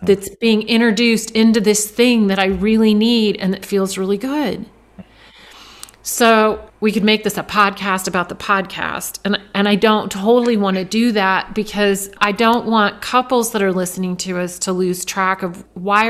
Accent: American